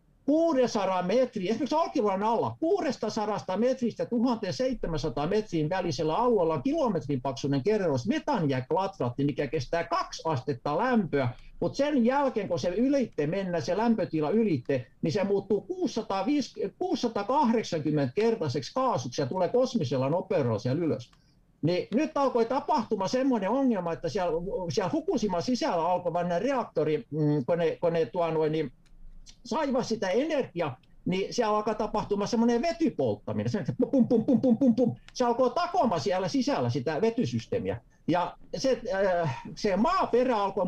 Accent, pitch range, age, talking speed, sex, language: native, 160-250 Hz, 60-79, 130 wpm, male, Finnish